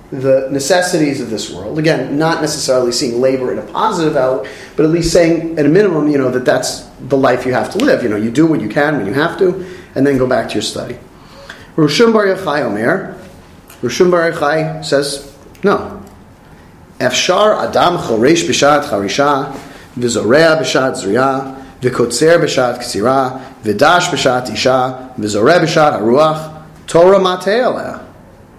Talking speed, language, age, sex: 155 wpm, English, 40-59, male